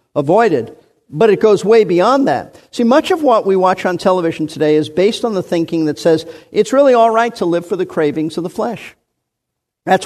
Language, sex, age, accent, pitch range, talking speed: English, male, 50-69, American, 175-255 Hz, 215 wpm